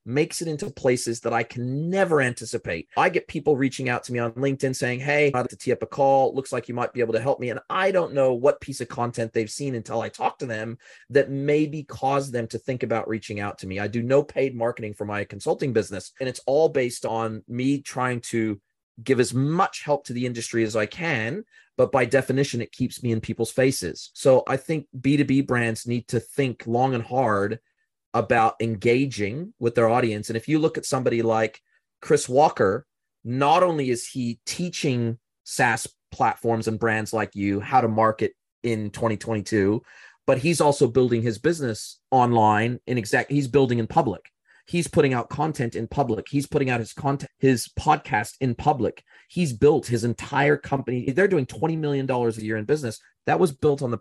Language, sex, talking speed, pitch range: English, male, 205 wpm, 115-140 Hz